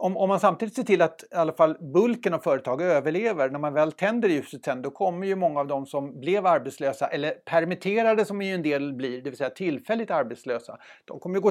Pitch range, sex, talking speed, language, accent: 140-185 Hz, male, 230 wpm, Swedish, native